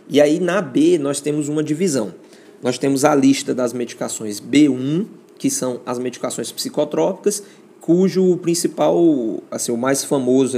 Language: Portuguese